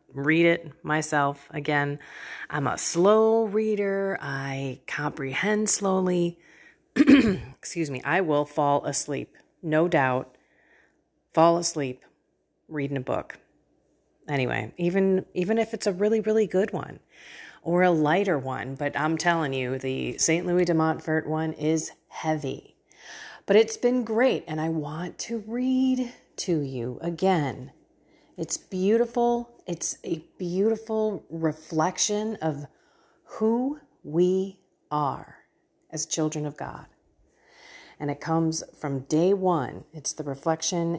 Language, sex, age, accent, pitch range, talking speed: English, female, 30-49, American, 145-190 Hz, 125 wpm